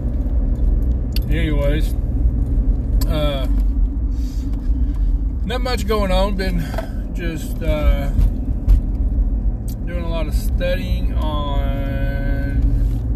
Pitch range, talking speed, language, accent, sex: 65-90 Hz, 70 wpm, English, American, male